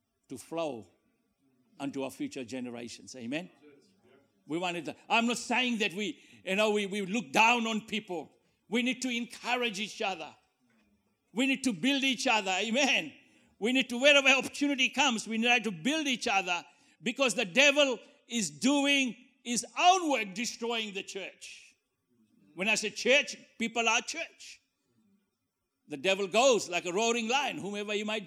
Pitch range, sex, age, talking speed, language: 165-255 Hz, male, 60-79, 160 wpm, English